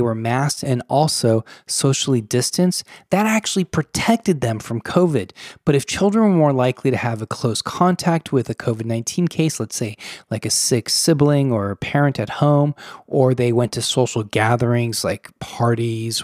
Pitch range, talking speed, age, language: 115-150 Hz, 170 wpm, 20-39, English